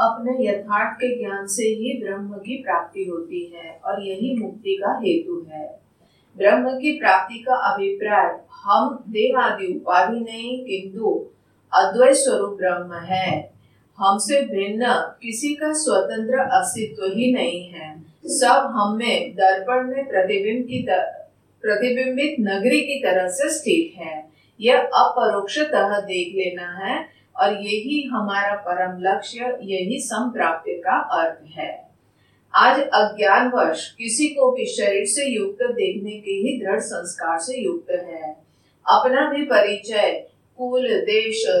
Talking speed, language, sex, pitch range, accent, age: 125 wpm, Hindi, female, 195-280 Hz, native, 40-59